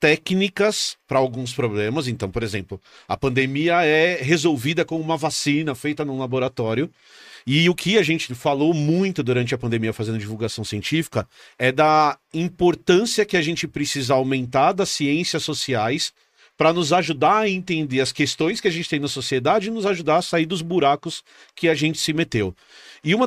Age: 40-59